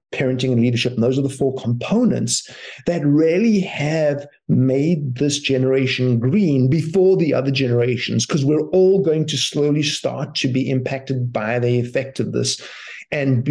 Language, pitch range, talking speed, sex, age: English, 125-155 Hz, 160 wpm, male, 50-69